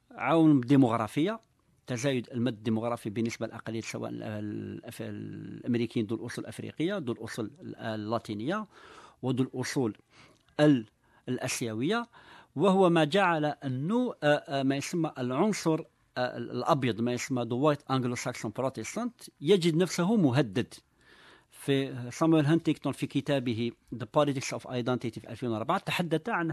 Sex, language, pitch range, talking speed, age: male, Arabic, 120-165 Hz, 110 wpm, 50-69